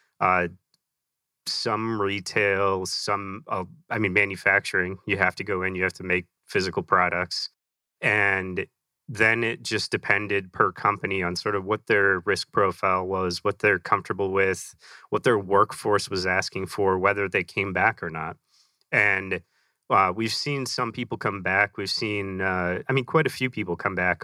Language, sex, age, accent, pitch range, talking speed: English, male, 30-49, American, 90-105 Hz, 170 wpm